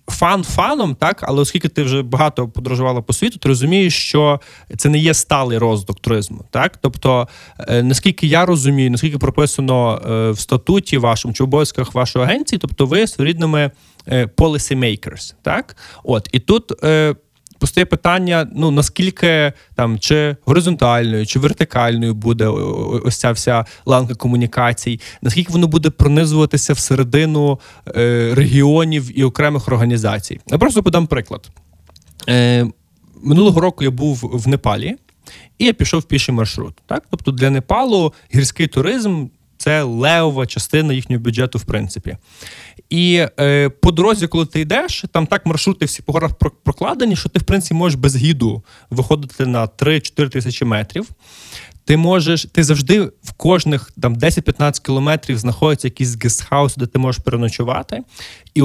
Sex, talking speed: male, 140 wpm